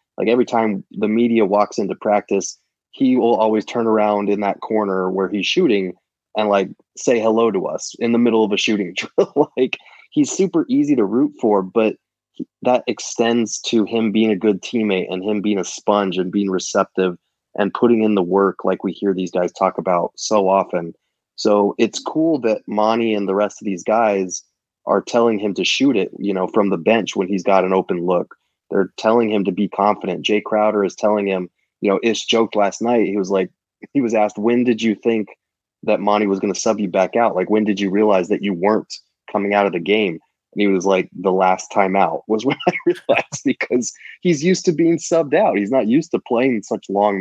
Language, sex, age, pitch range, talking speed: English, male, 20-39, 95-115 Hz, 220 wpm